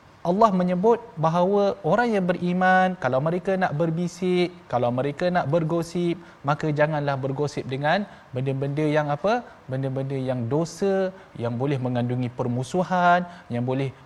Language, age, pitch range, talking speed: Malayalam, 20-39, 145-180 Hz, 130 wpm